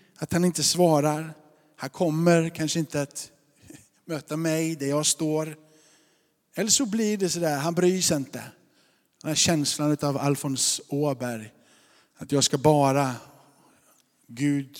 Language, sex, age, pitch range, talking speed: Swedish, male, 50-69, 150-185 Hz, 140 wpm